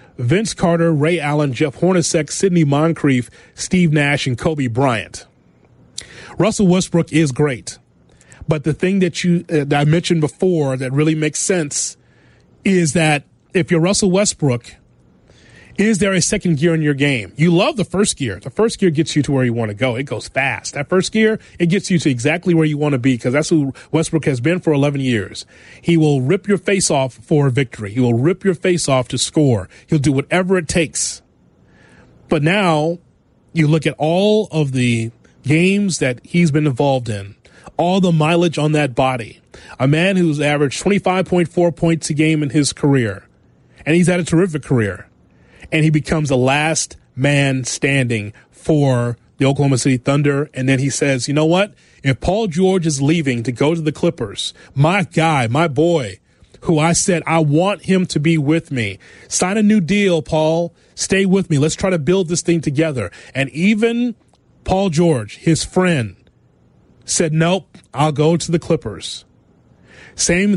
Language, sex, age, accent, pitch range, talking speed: English, male, 30-49, American, 135-175 Hz, 185 wpm